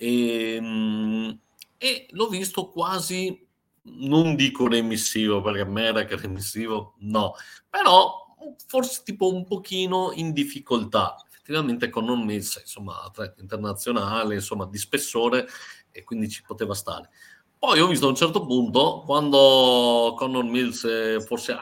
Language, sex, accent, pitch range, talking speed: Italian, male, native, 110-145 Hz, 125 wpm